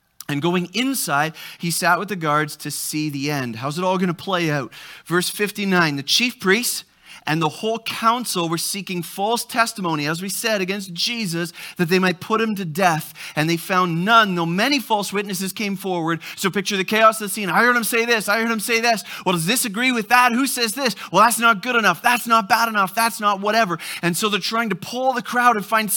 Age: 30-49